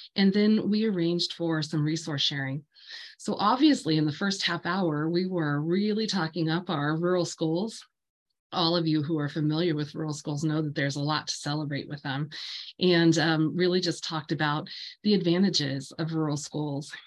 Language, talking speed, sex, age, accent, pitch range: English, 185 wpm, female, 30-49, American, 150-180 Hz